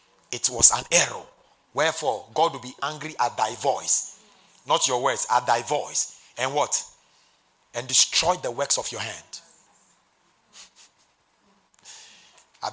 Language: English